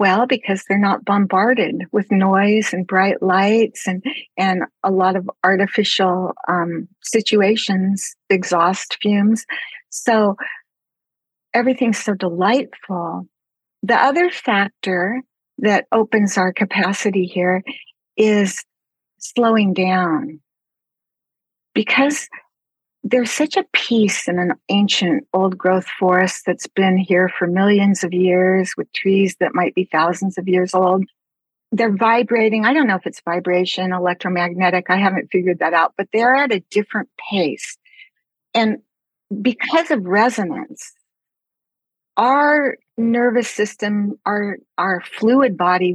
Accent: American